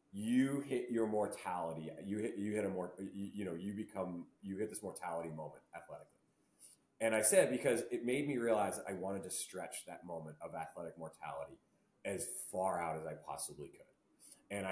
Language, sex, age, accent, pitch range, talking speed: English, male, 30-49, American, 90-110 Hz, 190 wpm